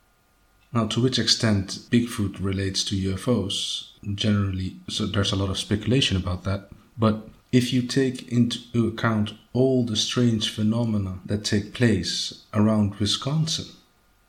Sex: male